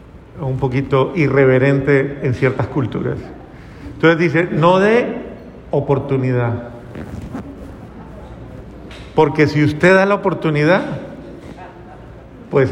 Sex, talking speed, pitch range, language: male, 85 wpm, 135-185 Hz, Spanish